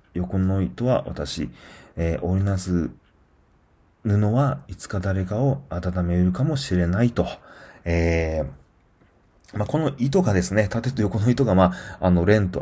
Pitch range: 90-120 Hz